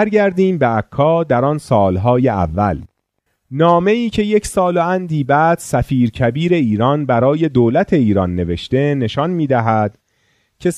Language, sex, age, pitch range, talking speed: Persian, male, 30-49, 110-165 Hz, 135 wpm